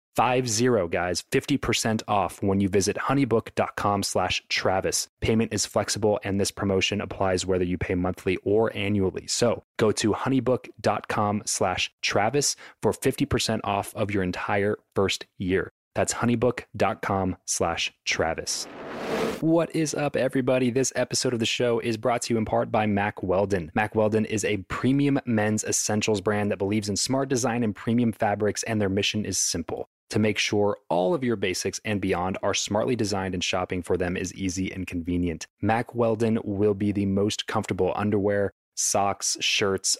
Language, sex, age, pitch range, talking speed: English, male, 20-39, 95-115 Hz, 170 wpm